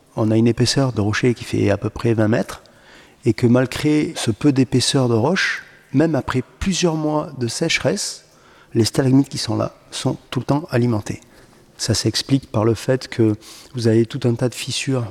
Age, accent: 40-59, French